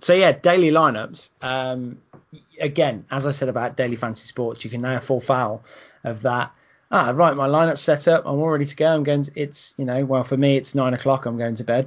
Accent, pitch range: British, 115-140 Hz